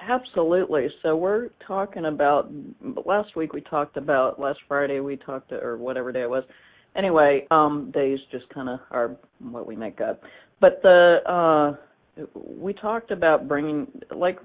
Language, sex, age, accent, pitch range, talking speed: English, female, 40-59, American, 140-165 Hz, 160 wpm